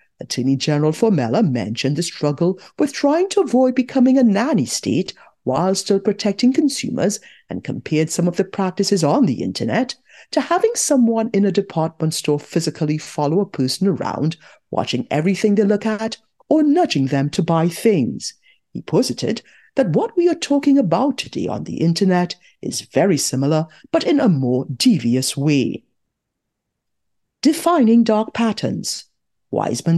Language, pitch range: English, 155-225 Hz